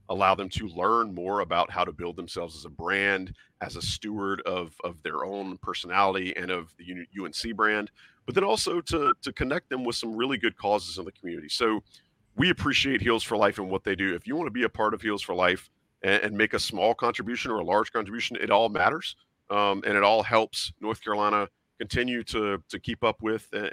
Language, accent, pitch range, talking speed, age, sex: English, American, 95-110 Hz, 225 wpm, 40-59, male